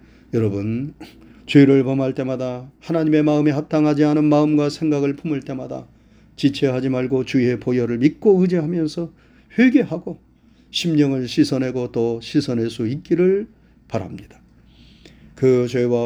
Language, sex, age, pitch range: Korean, male, 40-59, 115-150 Hz